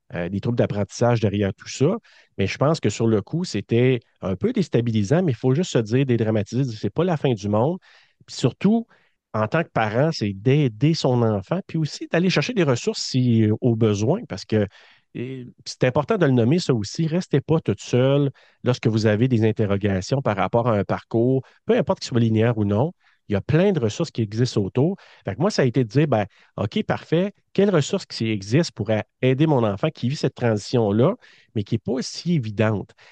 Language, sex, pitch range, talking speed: French, male, 110-155 Hz, 215 wpm